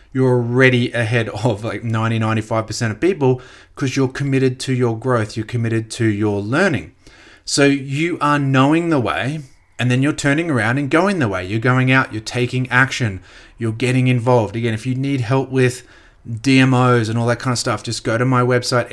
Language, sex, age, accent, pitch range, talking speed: English, male, 30-49, Australian, 110-130 Hz, 195 wpm